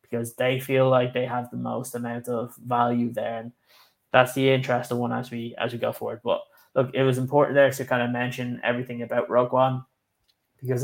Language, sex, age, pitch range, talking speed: English, male, 10-29, 120-135 Hz, 210 wpm